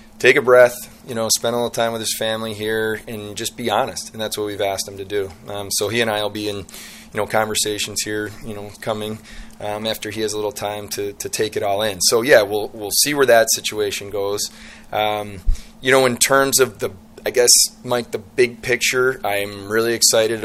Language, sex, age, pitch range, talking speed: English, male, 30-49, 105-120 Hz, 230 wpm